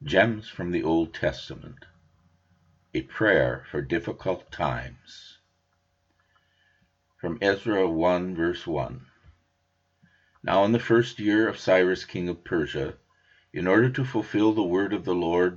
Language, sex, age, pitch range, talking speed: English, male, 50-69, 80-100 Hz, 130 wpm